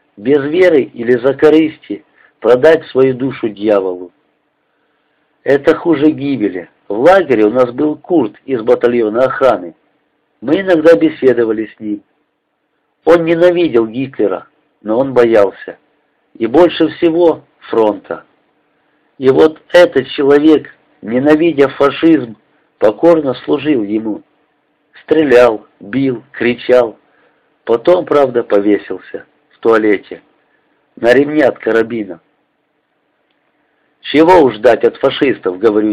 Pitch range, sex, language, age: 120-160 Hz, male, Russian, 50-69